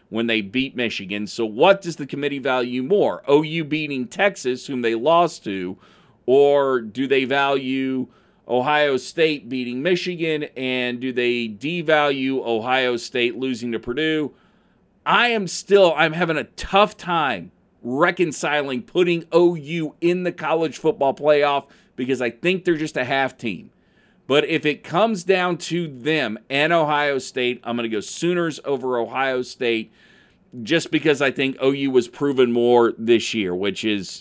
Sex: male